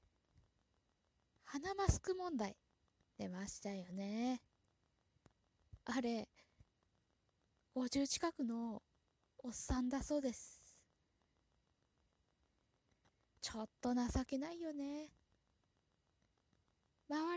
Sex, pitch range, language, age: female, 215-300 Hz, Japanese, 20-39